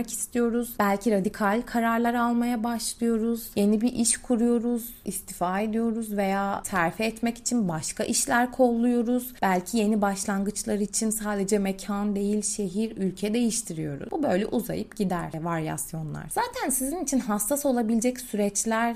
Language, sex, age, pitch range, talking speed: Turkish, female, 30-49, 190-235 Hz, 125 wpm